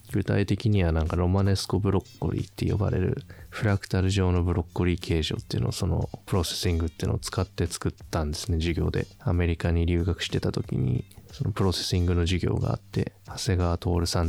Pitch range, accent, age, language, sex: 90-110 Hz, native, 20-39, Japanese, male